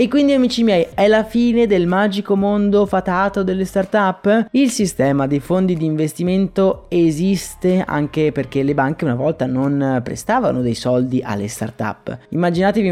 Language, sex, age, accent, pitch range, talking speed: Italian, male, 20-39, native, 145-195 Hz, 155 wpm